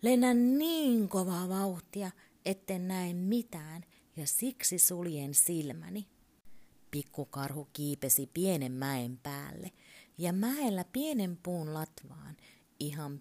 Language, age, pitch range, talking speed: Finnish, 30-49, 150-205 Hz, 100 wpm